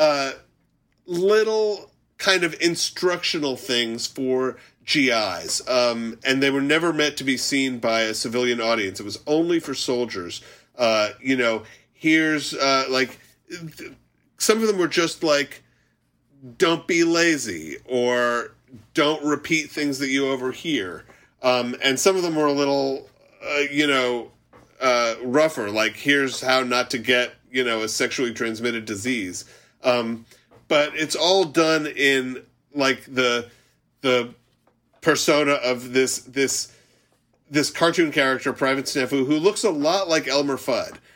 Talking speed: 145 wpm